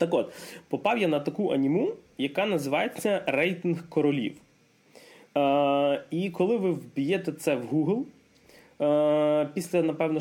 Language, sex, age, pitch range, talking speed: Ukrainian, male, 20-39, 145-195 Hz, 130 wpm